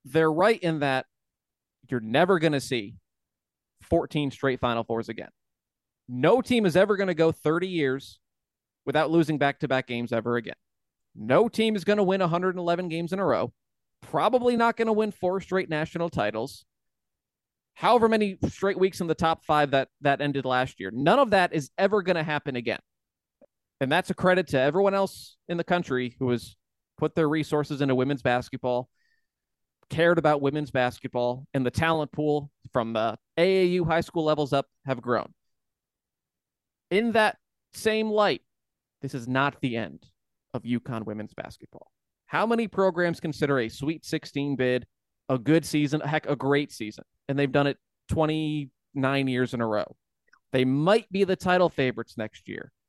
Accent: American